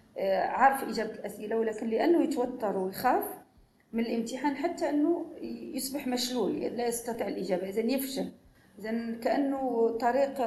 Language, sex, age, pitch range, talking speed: Arabic, female, 40-59, 190-230 Hz, 120 wpm